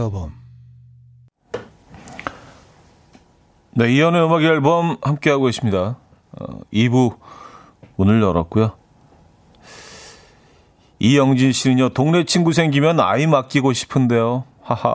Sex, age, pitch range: male, 40-59, 90-130 Hz